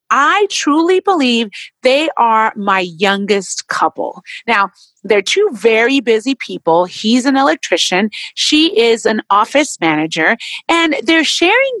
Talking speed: 125 wpm